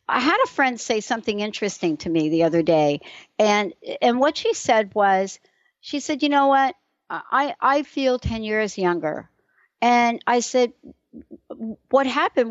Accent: American